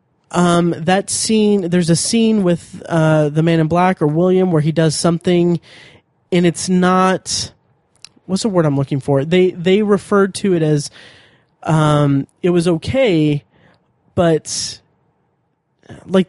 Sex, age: male, 30-49